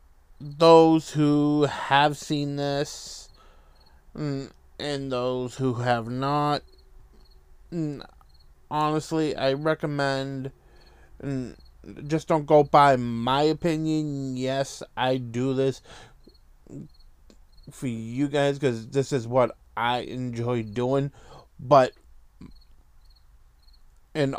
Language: English